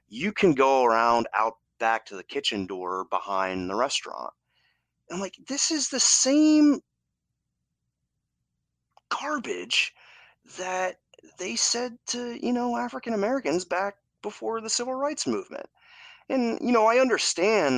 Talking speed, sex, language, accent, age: 130 wpm, male, English, American, 30-49